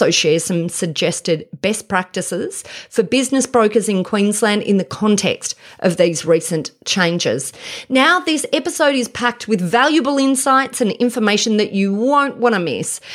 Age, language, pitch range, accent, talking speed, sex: 30-49, English, 180-240 Hz, Australian, 150 wpm, female